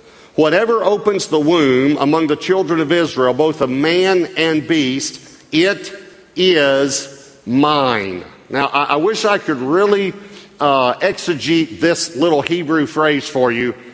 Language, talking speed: English, 140 wpm